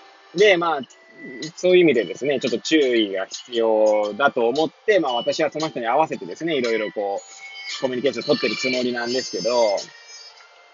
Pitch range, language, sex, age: 125-195 Hz, Japanese, male, 20-39